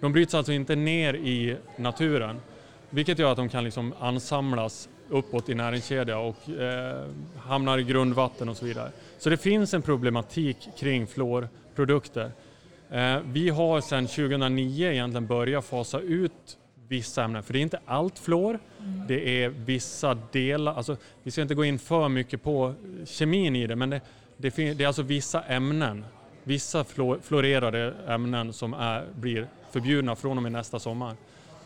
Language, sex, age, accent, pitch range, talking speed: Swedish, male, 30-49, Norwegian, 120-150 Hz, 165 wpm